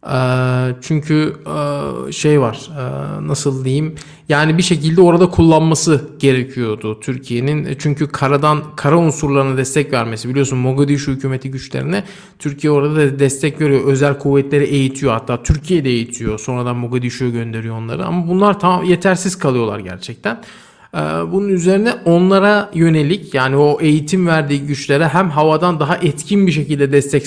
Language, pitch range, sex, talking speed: Turkish, 135-165 Hz, male, 130 wpm